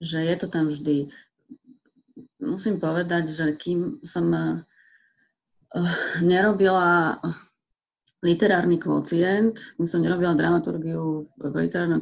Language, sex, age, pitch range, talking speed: Slovak, female, 30-49, 145-175 Hz, 95 wpm